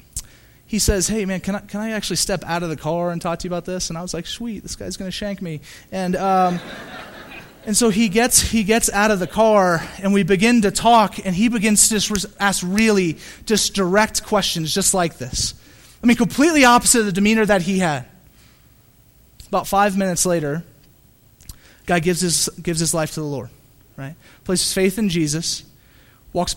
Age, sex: 30-49, male